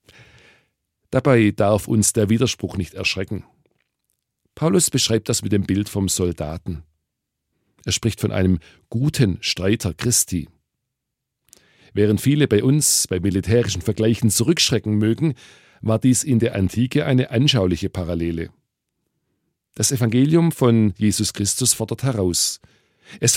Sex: male